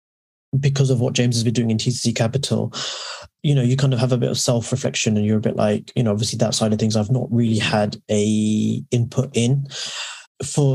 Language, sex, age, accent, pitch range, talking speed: English, male, 20-39, British, 105-125 Hz, 225 wpm